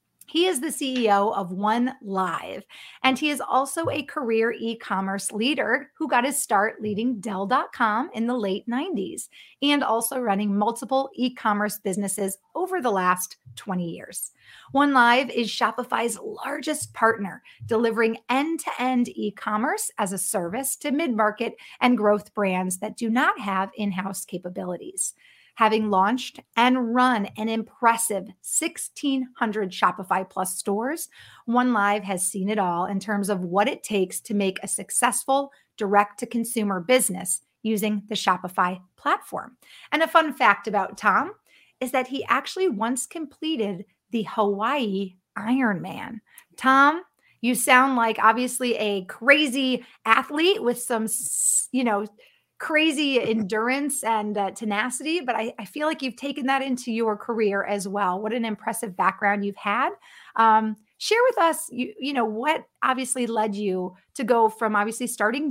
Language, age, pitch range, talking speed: English, 30-49, 200-260 Hz, 150 wpm